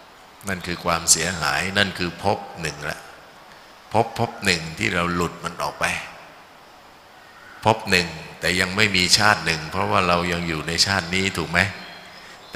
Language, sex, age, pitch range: Thai, male, 60-79, 85-100 Hz